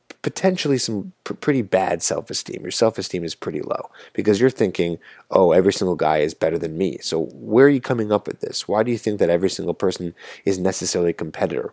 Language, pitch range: English, 100-155 Hz